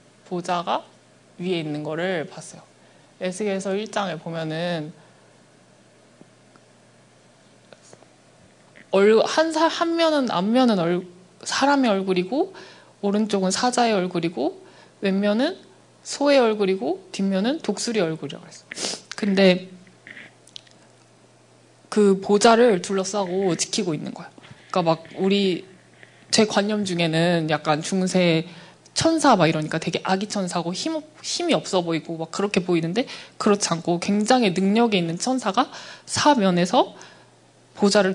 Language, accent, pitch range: Korean, native, 170-225 Hz